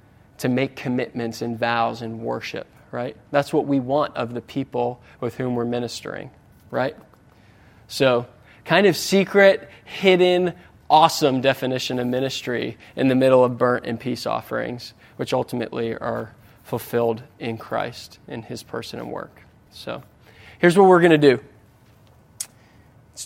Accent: American